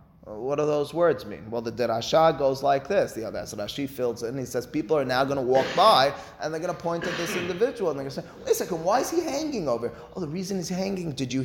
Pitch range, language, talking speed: 140-200 Hz, English, 290 wpm